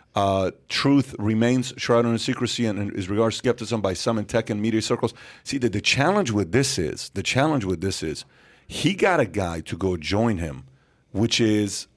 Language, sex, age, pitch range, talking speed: English, male, 40-59, 100-125 Hz, 195 wpm